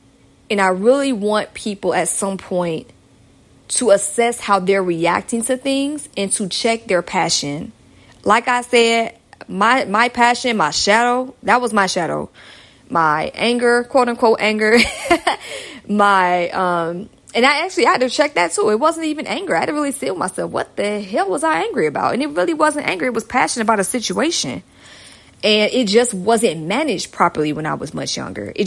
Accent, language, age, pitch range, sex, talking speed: American, English, 20-39, 190-240 Hz, female, 185 wpm